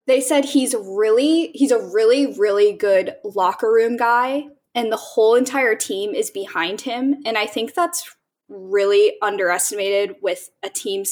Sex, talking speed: female, 155 wpm